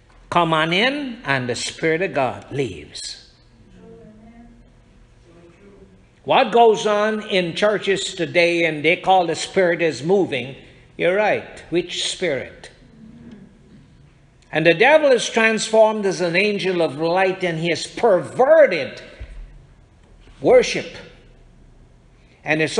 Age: 60-79